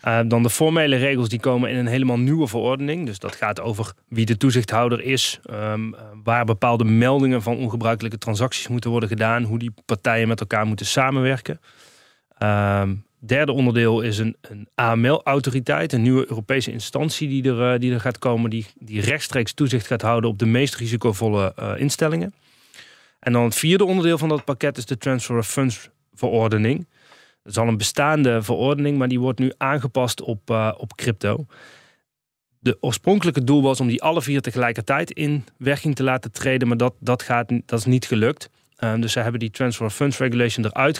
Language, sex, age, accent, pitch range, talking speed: Dutch, male, 30-49, Dutch, 115-135 Hz, 175 wpm